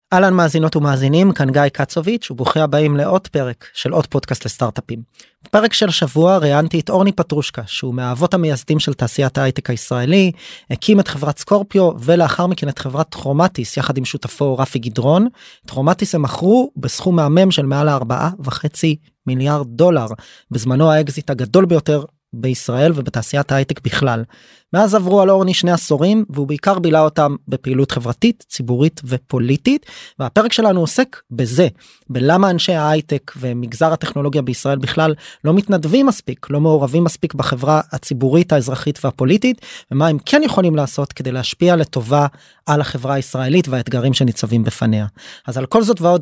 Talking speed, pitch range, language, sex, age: 150 wpm, 135-175 Hz, Hebrew, male, 20-39